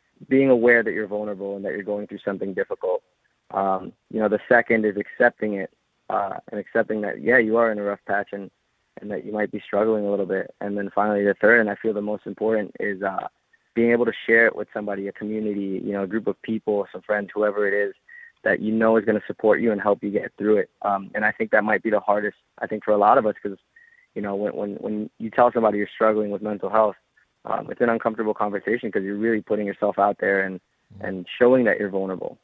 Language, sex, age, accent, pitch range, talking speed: English, male, 20-39, American, 100-110 Hz, 250 wpm